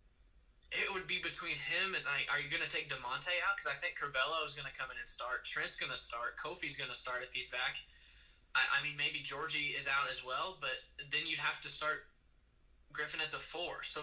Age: 20-39